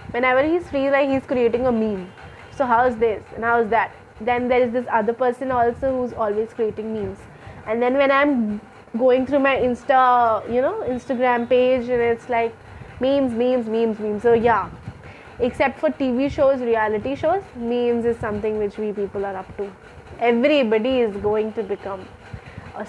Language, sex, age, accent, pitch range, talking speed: English, female, 20-39, Indian, 215-260 Hz, 175 wpm